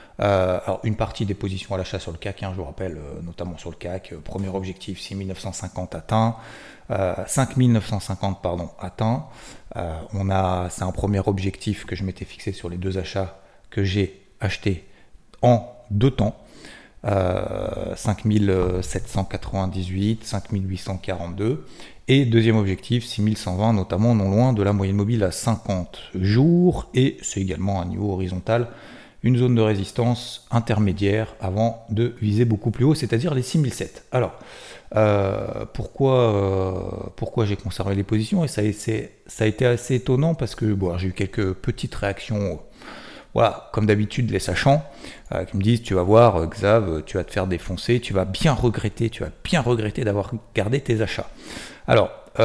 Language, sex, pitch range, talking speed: French, male, 95-115 Hz, 165 wpm